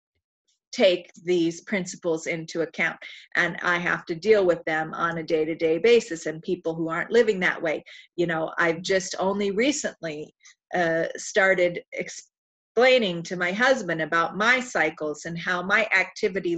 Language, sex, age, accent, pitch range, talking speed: English, female, 40-59, American, 170-230 Hz, 160 wpm